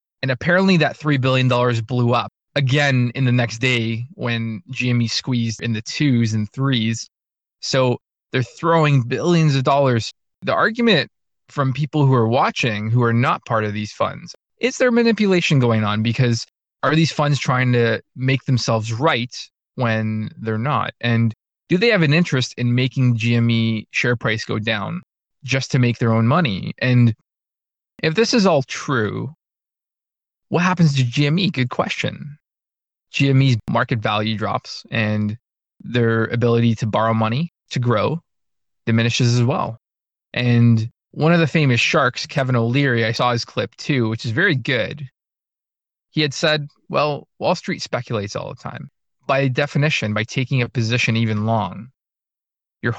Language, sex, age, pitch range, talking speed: English, male, 20-39, 115-145 Hz, 155 wpm